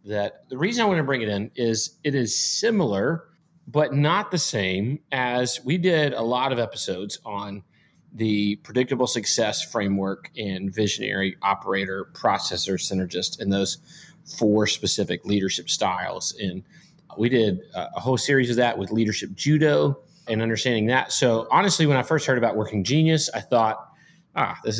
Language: English